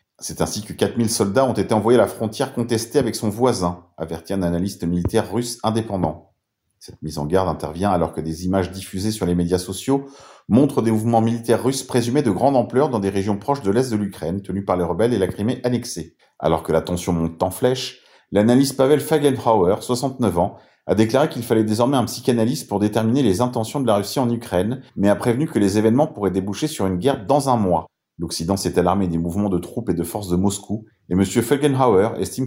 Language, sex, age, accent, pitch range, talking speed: French, male, 40-59, French, 90-120 Hz, 220 wpm